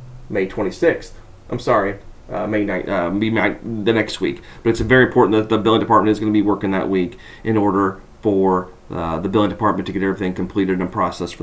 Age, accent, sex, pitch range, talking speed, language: 30-49, American, male, 105-130 Hz, 215 wpm, English